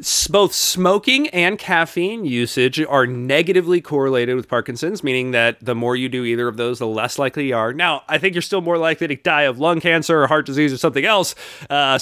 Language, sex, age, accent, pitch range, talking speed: English, male, 30-49, American, 125-175 Hz, 215 wpm